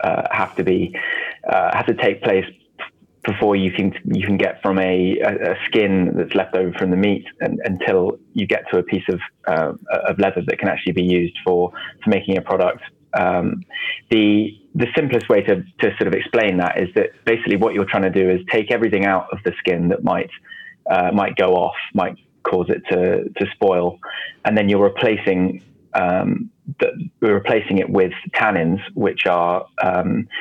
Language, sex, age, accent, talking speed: English, male, 20-39, British, 195 wpm